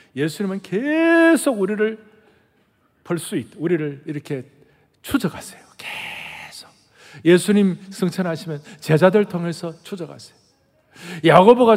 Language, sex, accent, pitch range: Korean, male, native, 155-225 Hz